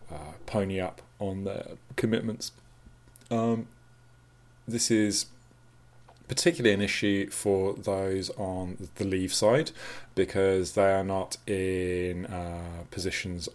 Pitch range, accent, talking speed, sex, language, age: 90-110 Hz, British, 110 wpm, male, English, 30-49